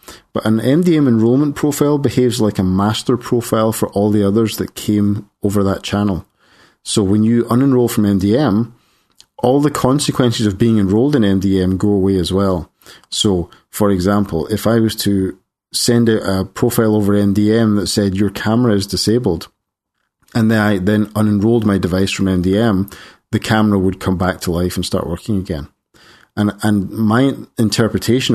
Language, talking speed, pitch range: English, 170 wpm, 95-110 Hz